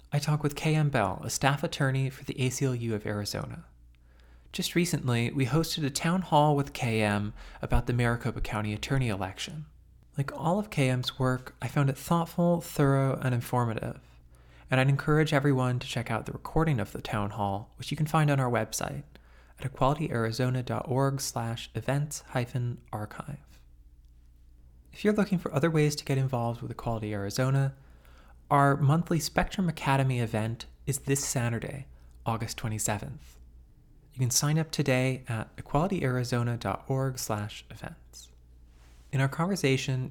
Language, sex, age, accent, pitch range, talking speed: English, male, 20-39, American, 110-145 Hz, 145 wpm